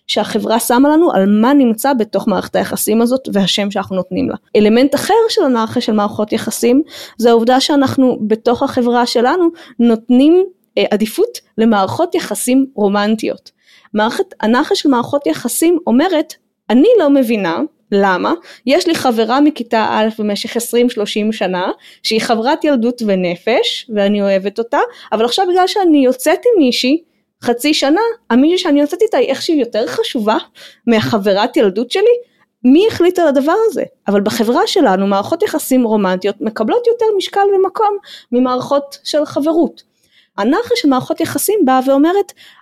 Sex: female